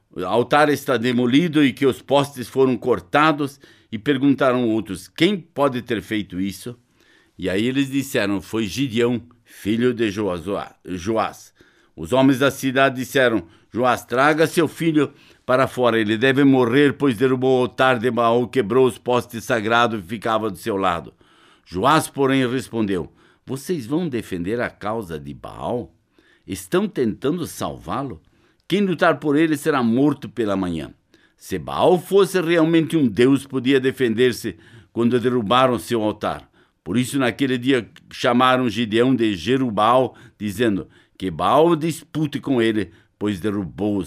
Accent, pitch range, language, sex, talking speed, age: Brazilian, 115-140 Hz, Portuguese, male, 145 wpm, 60-79